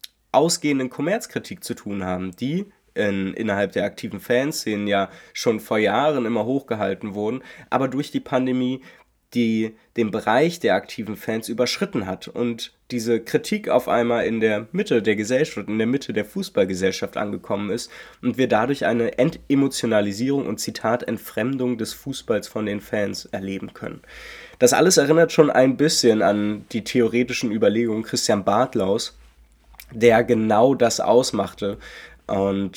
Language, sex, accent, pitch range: German, male, German, 105-130 Hz